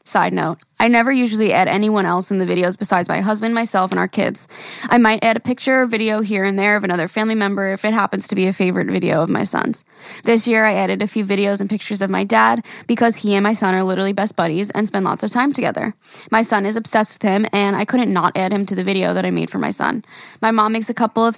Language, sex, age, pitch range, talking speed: English, female, 10-29, 200-230 Hz, 270 wpm